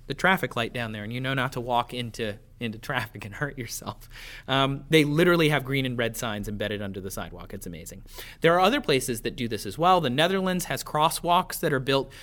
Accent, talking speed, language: American, 230 wpm, English